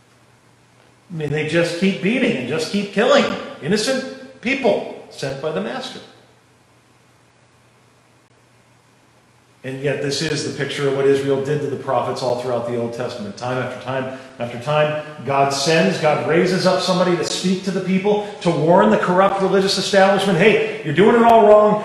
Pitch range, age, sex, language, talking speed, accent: 140-210 Hz, 40-59, male, English, 170 wpm, American